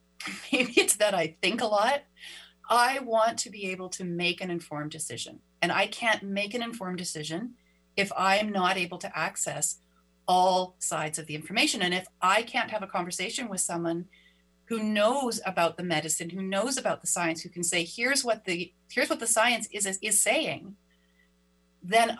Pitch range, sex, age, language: 160-220 Hz, female, 40-59, English